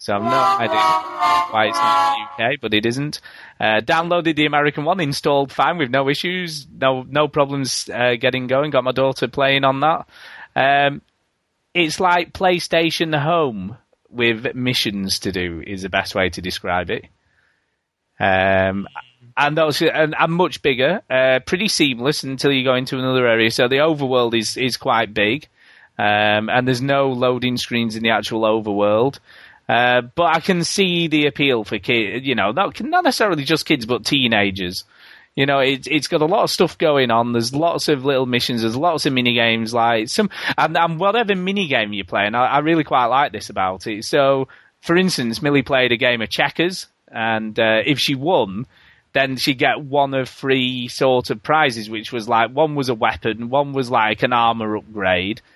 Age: 30-49